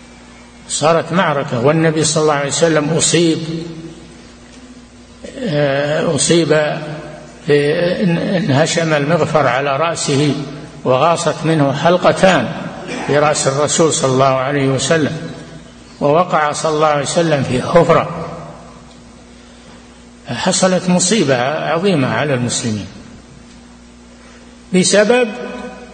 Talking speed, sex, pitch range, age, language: 85 wpm, male, 125-170 Hz, 60-79, Arabic